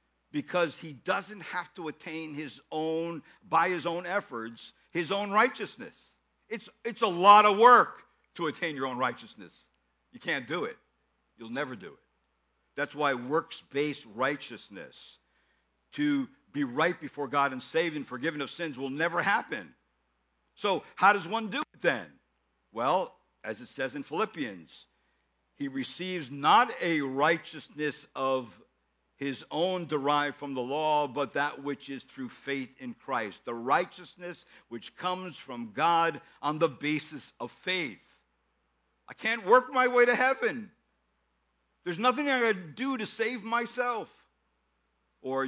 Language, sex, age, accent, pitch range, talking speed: English, male, 60-79, American, 125-180 Hz, 150 wpm